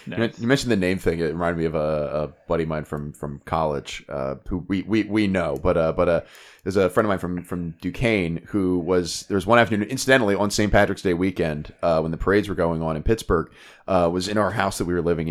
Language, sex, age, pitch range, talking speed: English, male, 20-39, 90-110 Hz, 255 wpm